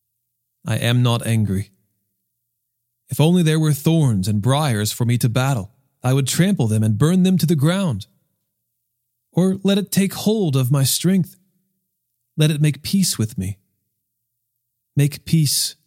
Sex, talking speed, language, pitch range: male, 155 wpm, English, 115-145 Hz